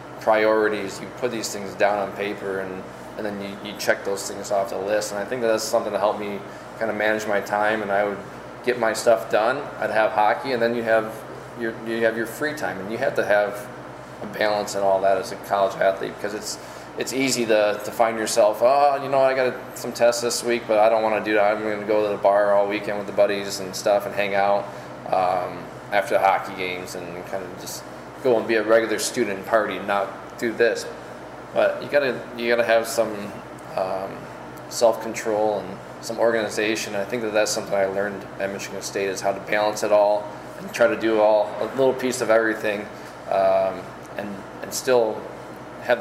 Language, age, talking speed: English, 20-39, 230 wpm